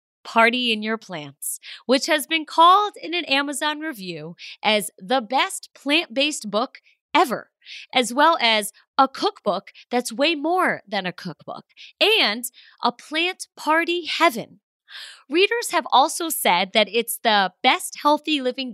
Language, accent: English, American